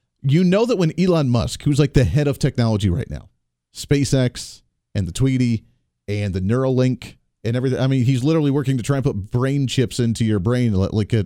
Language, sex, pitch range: English, male, 115-150 Hz